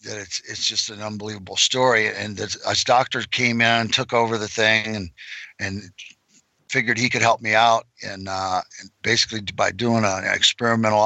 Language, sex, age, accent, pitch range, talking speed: English, male, 60-79, American, 105-120 Hz, 185 wpm